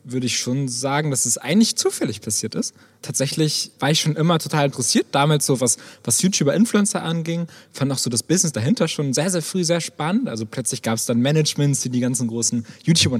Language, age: German, 20-39